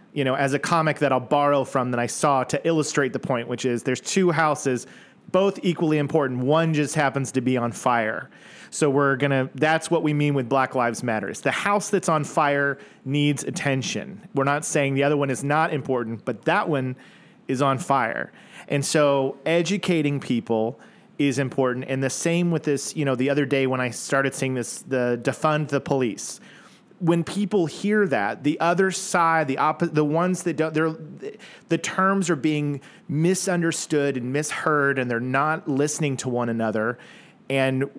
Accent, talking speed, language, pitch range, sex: American, 190 wpm, English, 135-160 Hz, male